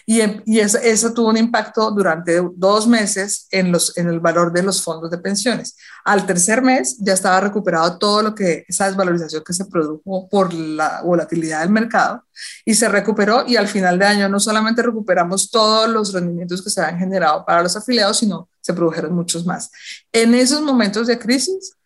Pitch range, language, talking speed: 175-225 Hz, Spanish, 185 wpm